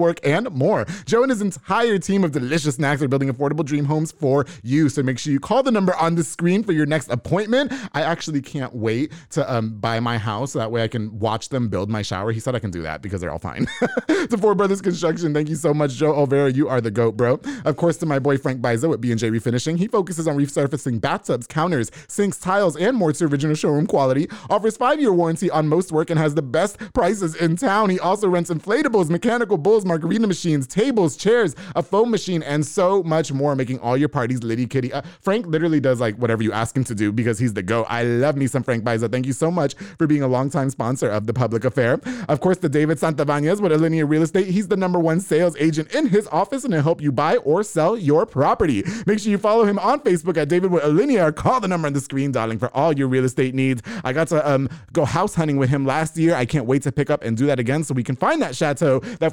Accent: American